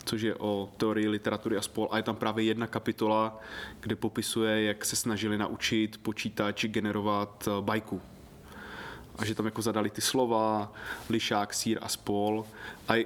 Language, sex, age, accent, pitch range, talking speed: Czech, male, 20-39, native, 110-130 Hz, 155 wpm